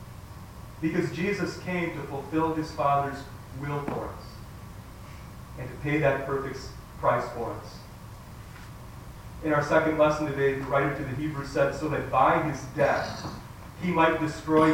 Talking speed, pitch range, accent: 150 wpm, 115-155 Hz, American